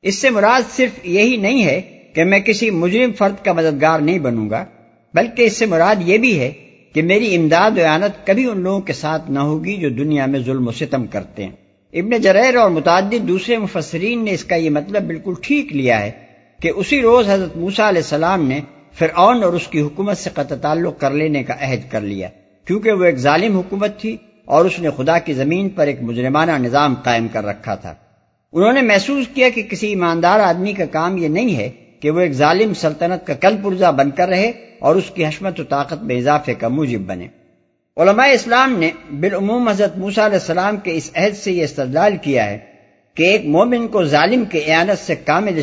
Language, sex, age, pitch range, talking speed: Urdu, male, 60-79, 145-200 Hz, 210 wpm